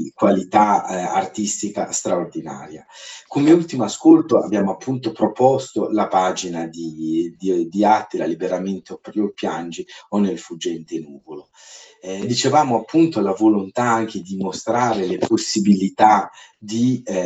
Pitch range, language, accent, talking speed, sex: 90-115 Hz, Italian, native, 120 wpm, male